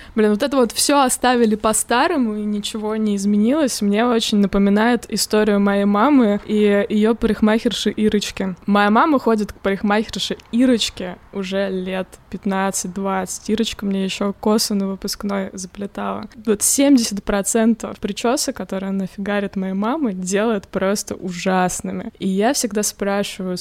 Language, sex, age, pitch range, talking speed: Russian, female, 20-39, 195-220 Hz, 130 wpm